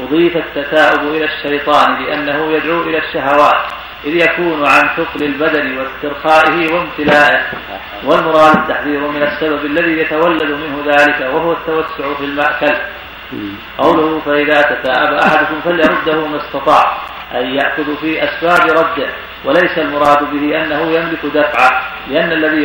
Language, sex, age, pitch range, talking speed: Arabic, male, 40-59, 145-160 Hz, 125 wpm